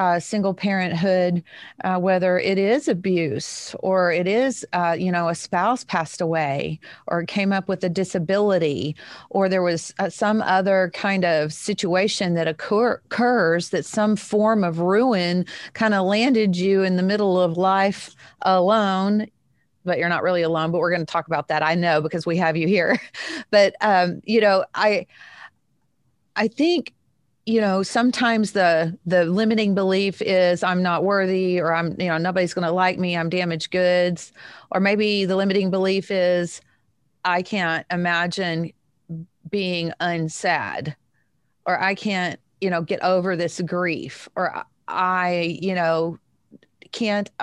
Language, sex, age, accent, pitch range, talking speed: English, female, 40-59, American, 170-200 Hz, 155 wpm